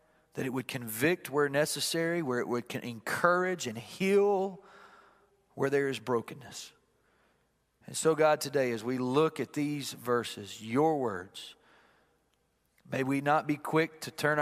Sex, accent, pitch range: male, American, 150-195 Hz